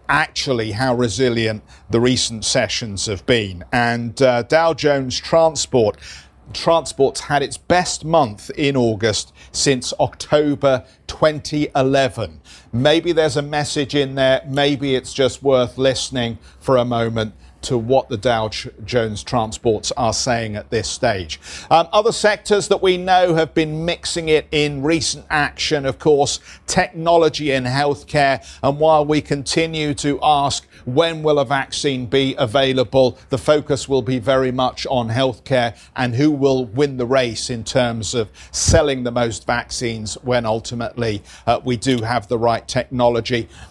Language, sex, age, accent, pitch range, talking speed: English, male, 50-69, British, 115-145 Hz, 150 wpm